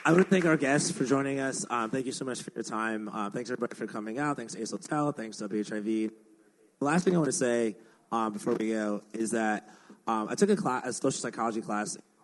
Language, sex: English, male